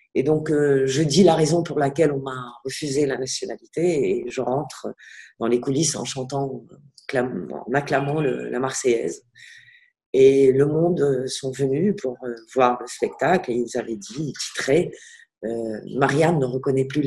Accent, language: French, French